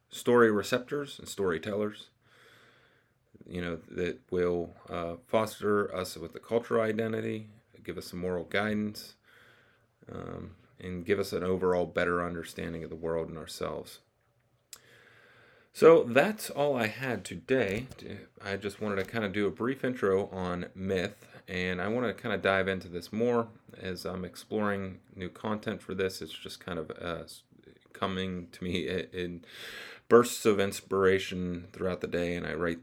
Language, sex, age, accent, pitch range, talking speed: English, male, 30-49, American, 90-115 Hz, 155 wpm